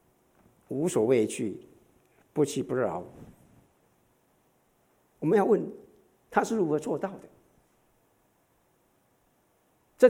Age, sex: 50-69, male